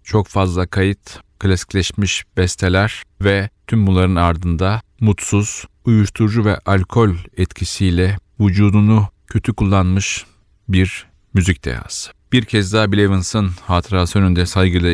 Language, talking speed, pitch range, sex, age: Turkish, 110 wpm, 90-105 Hz, male, 40-59